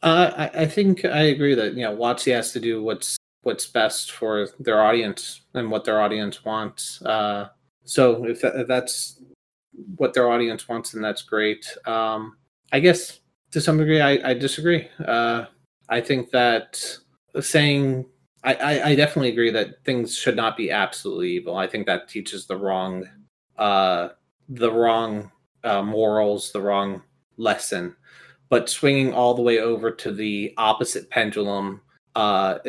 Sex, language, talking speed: male, English, 160 wpm